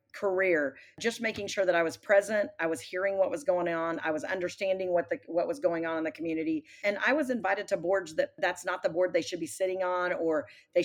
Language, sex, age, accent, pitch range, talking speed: English, female, 40-59, American, 170-200 Hz, 245 wpm